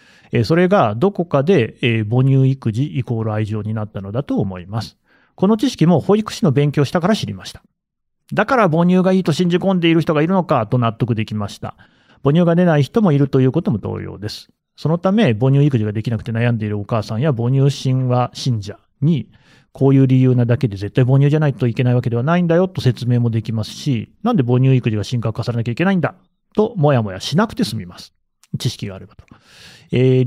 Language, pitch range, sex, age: Japanese, 115-165 Hz, male, 30-49